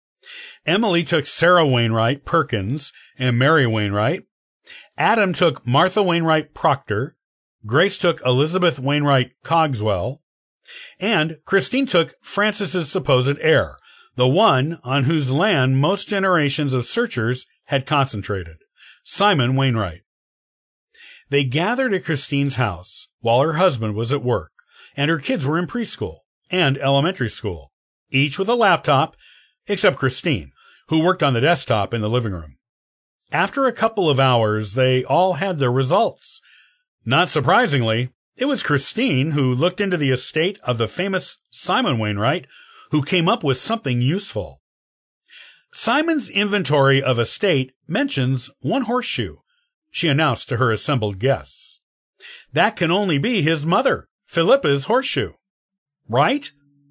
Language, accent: English, American